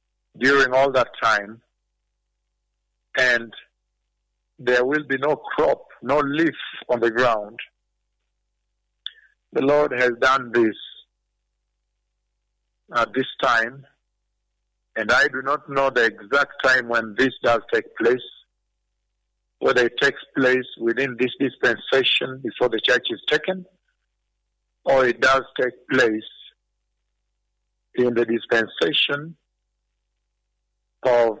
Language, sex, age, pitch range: English, male, 50-69, 95-135 Hz